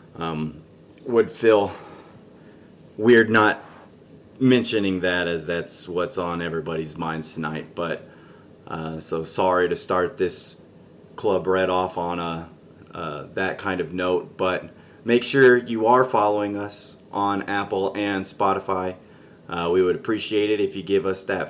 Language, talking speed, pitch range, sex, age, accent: English, 140 wpm, 90-105 Hz, male, 30-49, American